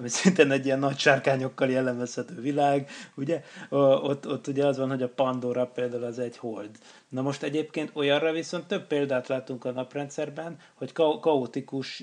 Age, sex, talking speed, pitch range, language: 30-49, male, 170 wpm, 125-145 Hz, Hungarian